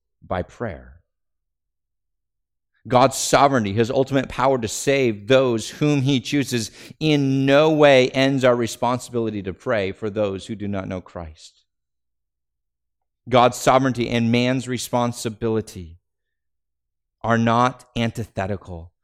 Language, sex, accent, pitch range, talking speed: English, male, American, 95-140 Hz, 115 wpm